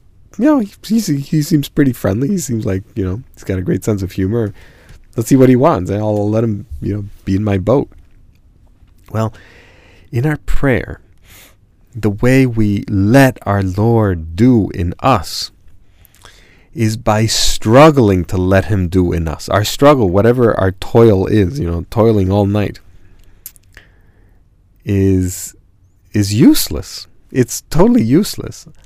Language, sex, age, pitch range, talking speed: English, male, 40-59, 95-115 Hz, 150 wpm